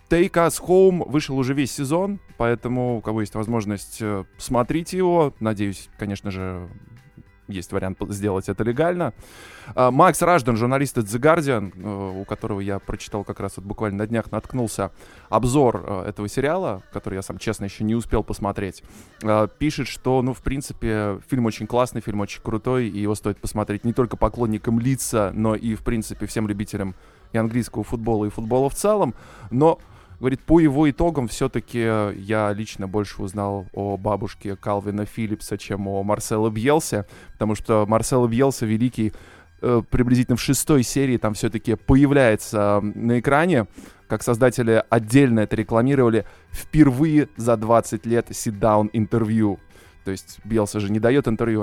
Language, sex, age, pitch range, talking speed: Russian, male, 20-39, 100-125 Hz, 150 wpm